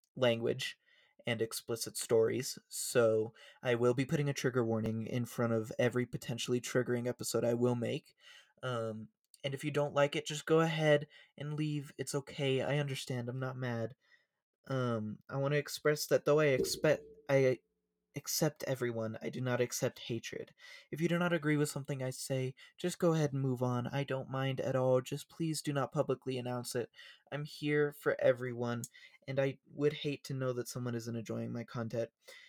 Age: 20-39